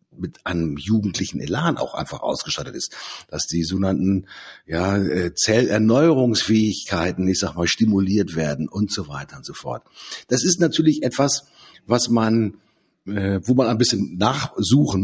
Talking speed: 145 wpm